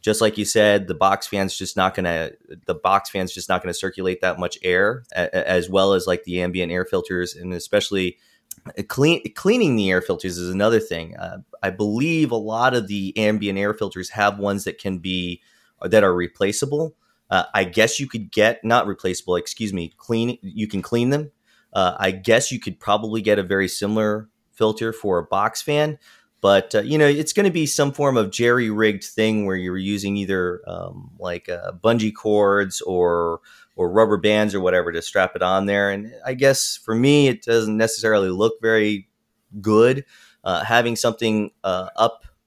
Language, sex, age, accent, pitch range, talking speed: English, male, 30-49, American, 95-120 Hz, 200 wpm